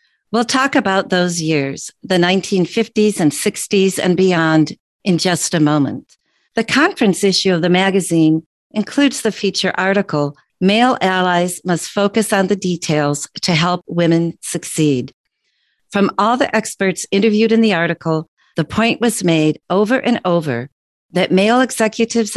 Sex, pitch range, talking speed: female, 160-205 Hz, 145 wpm